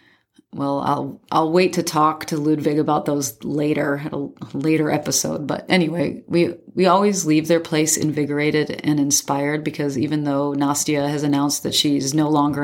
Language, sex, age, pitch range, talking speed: English, female, 30-49, 145-160 Hz, 165 wpm